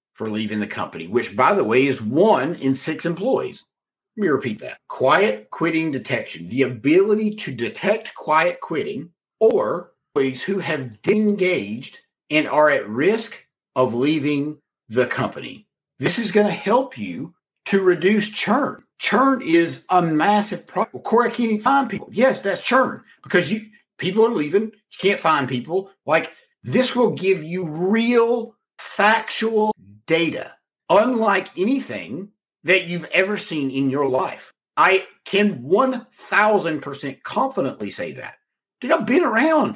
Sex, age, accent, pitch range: male, 50-69, American, 155-225 Hz